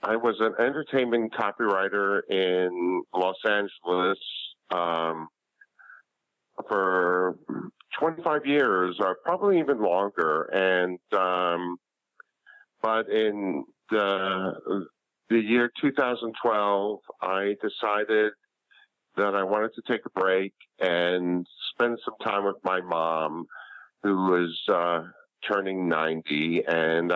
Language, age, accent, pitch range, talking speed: English, 50-69, American, 90-115 Hz, 100 wpm